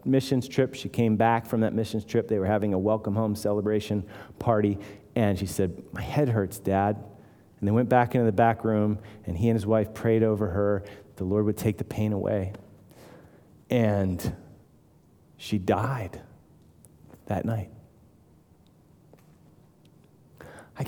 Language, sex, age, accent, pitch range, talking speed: English, male, 30-49, American, 105-150 Hz, 150 wpm